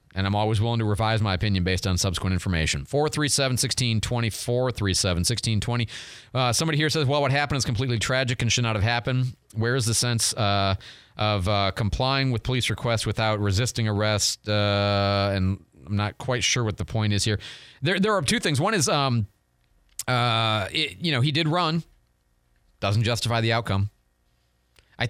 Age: 30-49